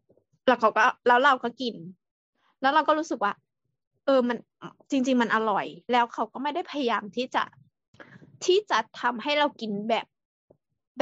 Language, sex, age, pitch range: Thai, female, 20-39, 215-265 Hz